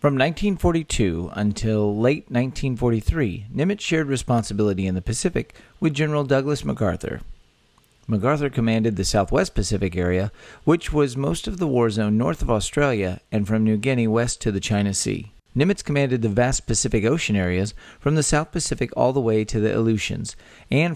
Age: 40-59